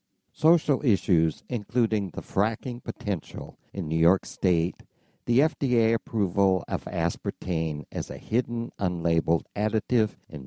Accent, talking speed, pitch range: American, 120 wpm, 80-110 Hz